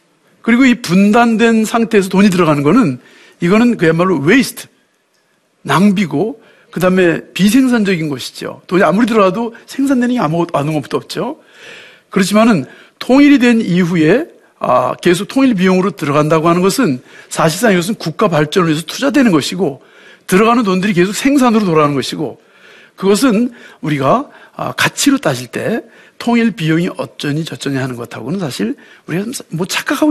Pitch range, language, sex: 155-225 Hz, Korean, male